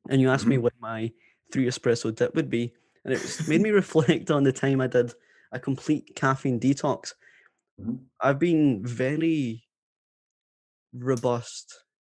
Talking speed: 145 wpm